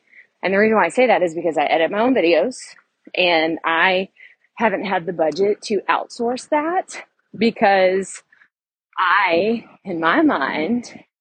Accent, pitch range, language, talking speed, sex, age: American, 175-240 Hz, English, 150 wpm, female, 20-39